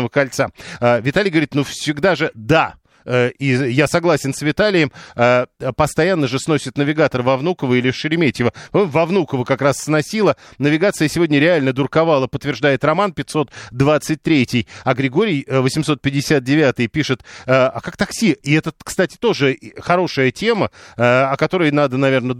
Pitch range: 130-160 Hz